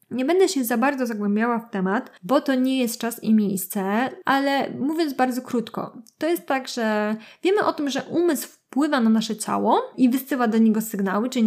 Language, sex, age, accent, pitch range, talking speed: Polish, female, 20-39, native, 215-310 Hz, 200 wpm